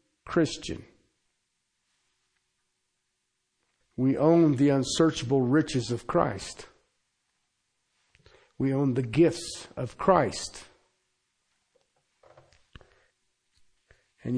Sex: male